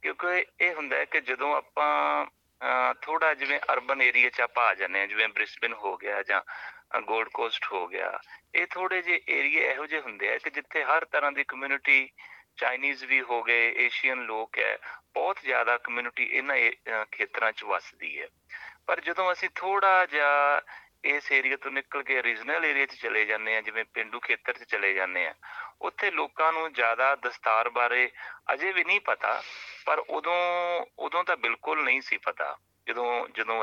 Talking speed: 175 wpm